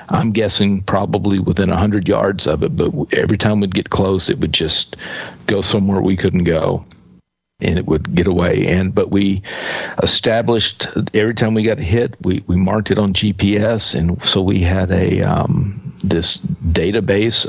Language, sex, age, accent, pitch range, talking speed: English, male, 50-69, American, 90-105 Hz, 175 wpm